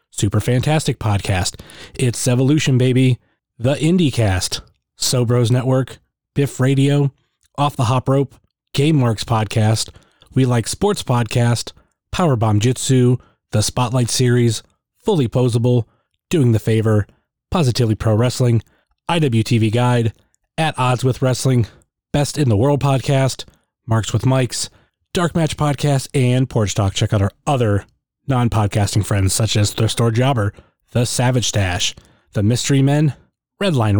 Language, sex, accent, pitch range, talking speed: English, male, American, 110-135 Hz, 130 wpm